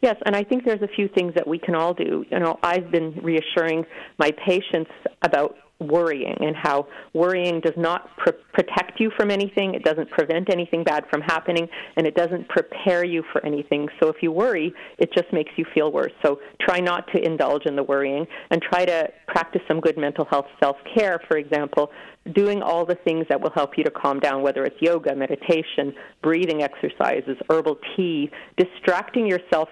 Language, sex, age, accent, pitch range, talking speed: English, female, 40-59, American, 150-180 Hz, 190 wpm